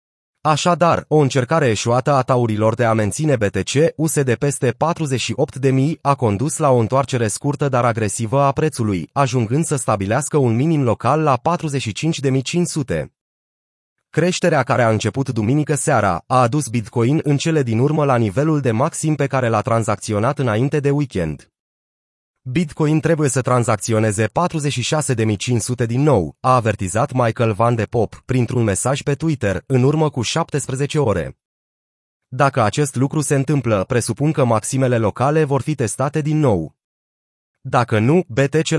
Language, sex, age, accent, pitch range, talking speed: Romanian, male, 30-49, native, 115-150 Hz, 145 wpm